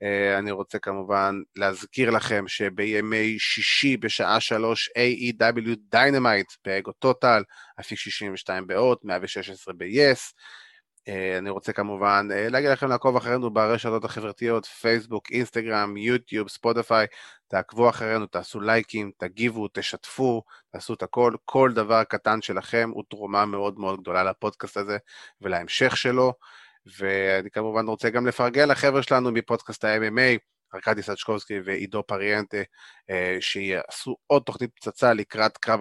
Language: Hebrew